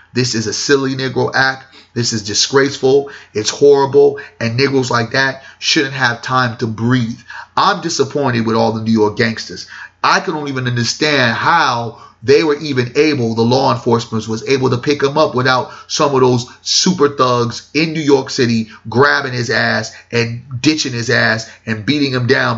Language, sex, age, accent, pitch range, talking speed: English, male, 30-49, American, 115-135 Hz, 180 wpm